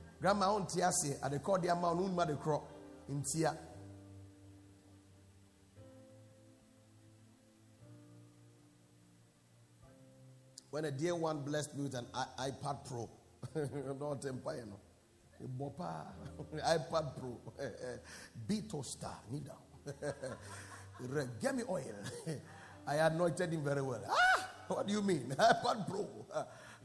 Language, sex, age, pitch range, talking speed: English, male, 50-69, 100-165 Hz, 105 wpm